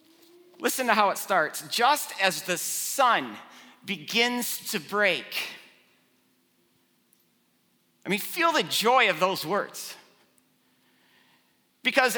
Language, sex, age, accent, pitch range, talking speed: English, male, 40-59, American, 170-230 Hz, 105 wpm